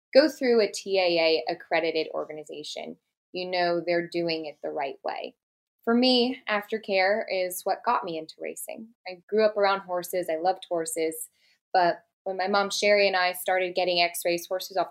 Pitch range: 170-210 Hz